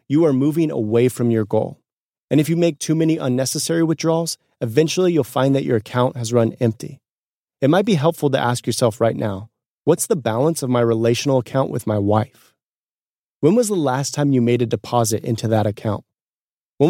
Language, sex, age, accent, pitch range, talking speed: English, male, 30-49, American, 115-140 Hz, 200 wpm